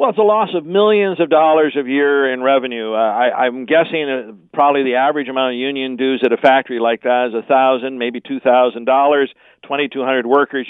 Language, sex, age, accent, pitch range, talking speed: English, male, 50-69, American, 125-150 Hz, 225 wpm